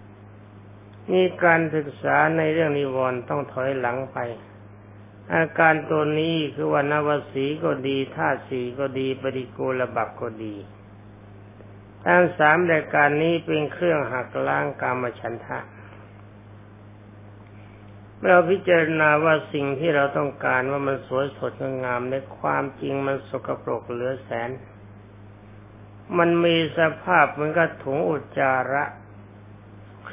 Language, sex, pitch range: Thai, male, 105-145 Hz